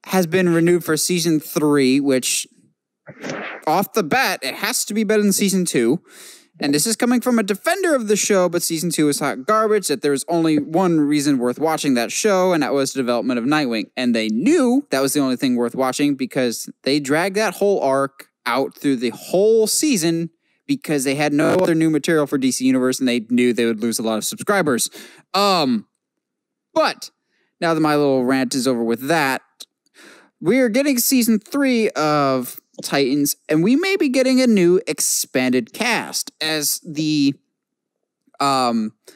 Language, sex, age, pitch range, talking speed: English, male, 20-39, 140-215 Hz, 185 wpm